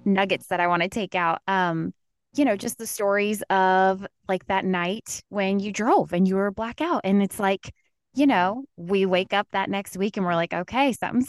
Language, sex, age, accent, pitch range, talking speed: English, female, 20-39, American, 165-200 Hz, 215 wpm